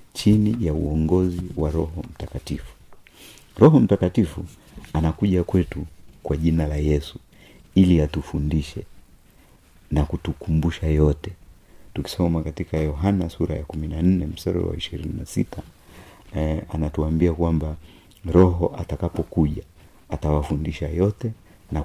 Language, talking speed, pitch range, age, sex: Swahili, 100 wpm, 80-95 Hz, 50-69, male